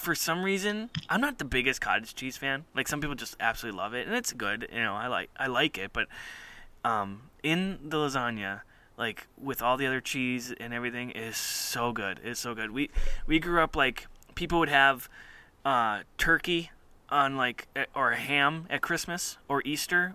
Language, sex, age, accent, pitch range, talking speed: English, male, 20-39, American, 125-160 Hz, 190 wpm